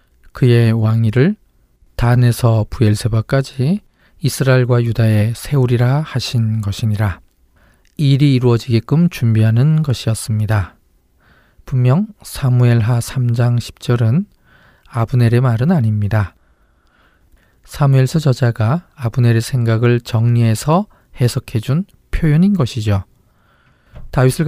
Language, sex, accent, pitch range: Korean, male, native, 110-135 Hz